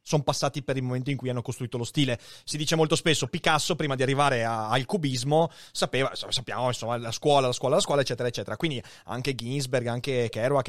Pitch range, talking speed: 125-160 Hz, 210 wpm